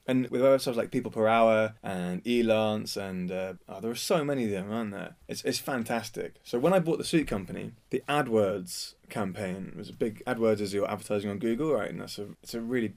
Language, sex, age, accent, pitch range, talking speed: English, male, 20-39, British, 105-135 Hz, 225 wpm